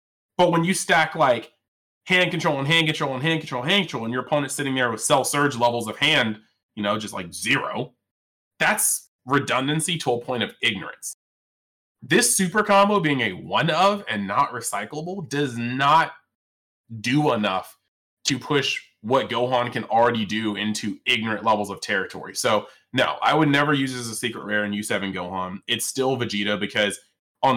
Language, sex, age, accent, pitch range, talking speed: English, male, 20-39, American, 105-145 Hz, 180 wpm